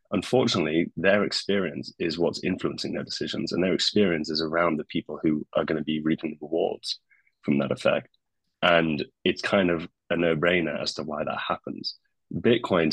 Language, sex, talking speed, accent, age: English, male, 180 wpm, British, 30-49